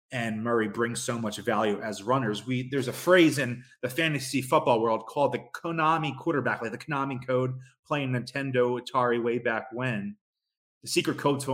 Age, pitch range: 20-39, 120-150 Hz